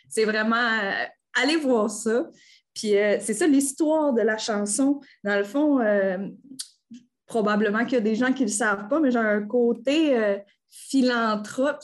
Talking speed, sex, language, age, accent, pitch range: 175 wpm, female, French, 20-39, Canadian, 205-255 Hz